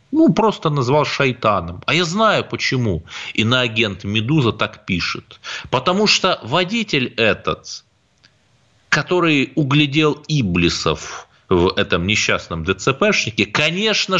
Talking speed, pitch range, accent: 100 wpm, 120-180 Hz, native